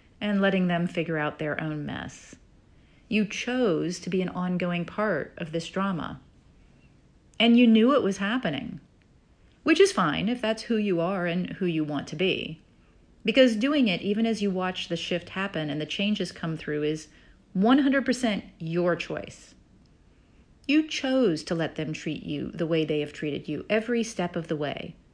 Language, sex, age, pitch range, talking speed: English, female, 40-59, 165-220 Hz, 180 wpm